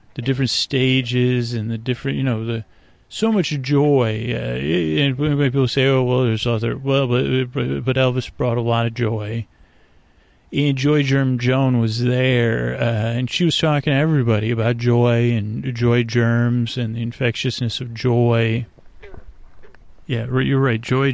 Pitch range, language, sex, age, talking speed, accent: 115-130 Hz, English, male, 30-49, 160 wpm, American